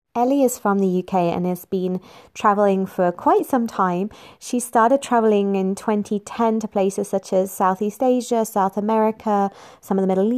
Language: English